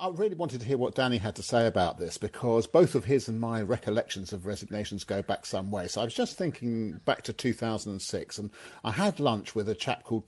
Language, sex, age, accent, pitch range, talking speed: English, male, 50-69, British, 105-140 Hz, 240 wpm